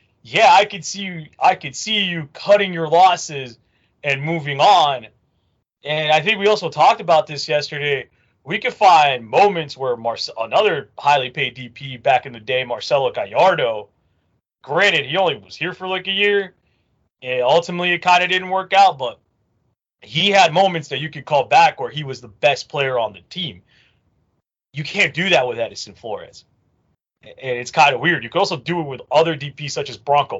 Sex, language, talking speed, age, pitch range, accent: male, English, 195 wpm, 30-49, 130-180 Hz, American